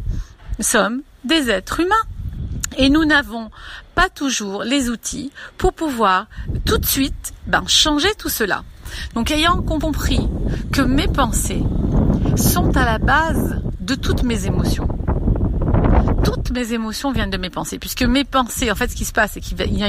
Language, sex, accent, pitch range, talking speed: French, female, French, 195-280 Hz, 165 wpm